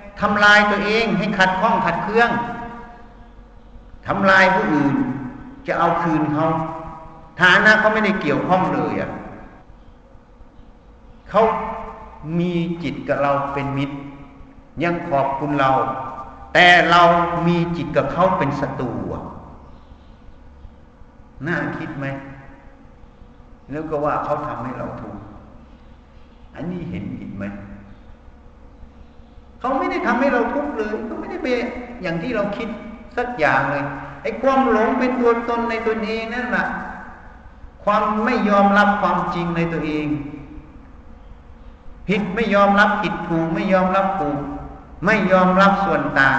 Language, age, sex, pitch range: Thai, 60-79, male, 135-205 Hz